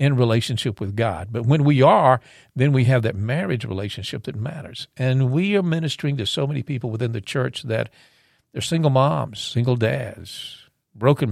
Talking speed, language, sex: 180 wpm, English, male